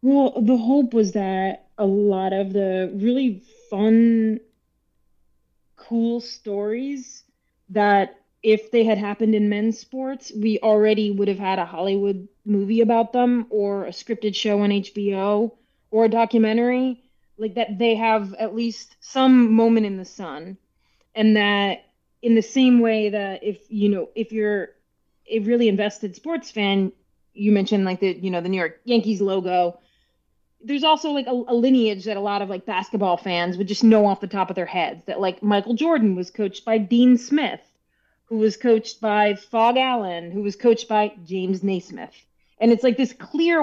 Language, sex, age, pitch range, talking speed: English, female, 20-39, 200-235 Hz, 175 wpm